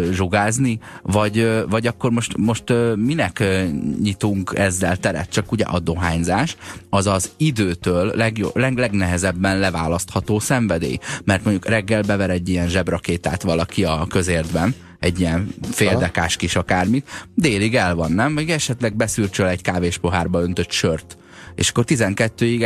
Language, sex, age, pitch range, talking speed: Hungarian, male, 30-49, 90-105 Hz, 135 wpm